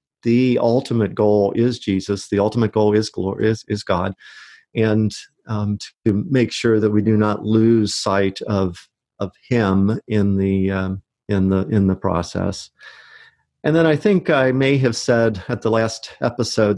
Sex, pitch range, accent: male, 110-130 Hz, American